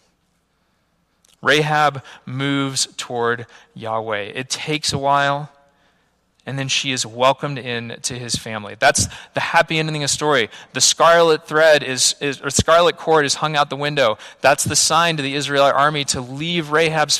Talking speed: 165 wpm